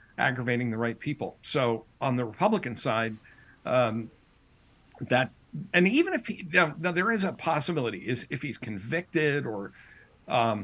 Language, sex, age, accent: English, male, 50-69, American